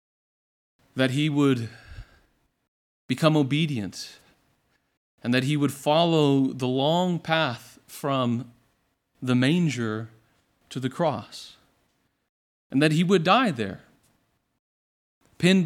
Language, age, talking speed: English, 40-59, 100 wpm